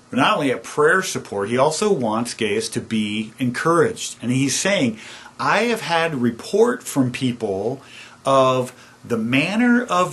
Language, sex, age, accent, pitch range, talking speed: English, male, 50-69, American, 120-180 Hz, 150 wpm